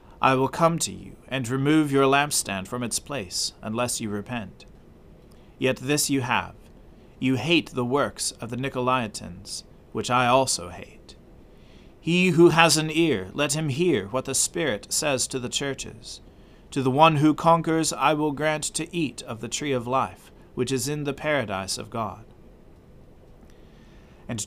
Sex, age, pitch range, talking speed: male, 40-59, 120-150 Hz, 165 wpm